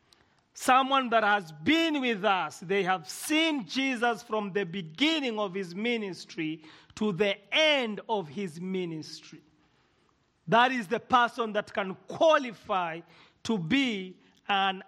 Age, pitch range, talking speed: 40-59, 190-255 Hz, 130 wpm